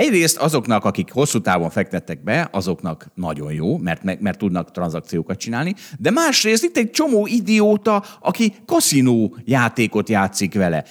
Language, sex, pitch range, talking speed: Hungarian, male, 95-155 Hz, 140 wpm